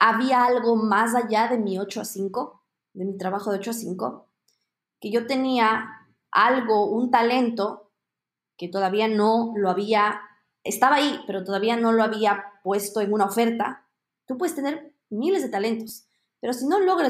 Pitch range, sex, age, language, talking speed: 215-270 Hz, female, 20-39, Spanish, 170 wpm